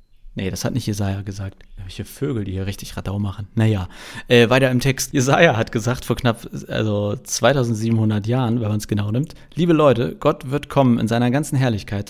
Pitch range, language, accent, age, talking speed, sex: 110-145 Hz, German, German, 40-59, 200 wpm, male